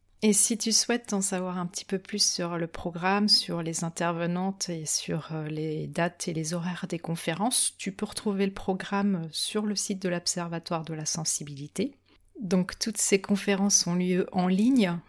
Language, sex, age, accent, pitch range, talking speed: French, female, 40-59, French, 165-195 Hz, 185 wpm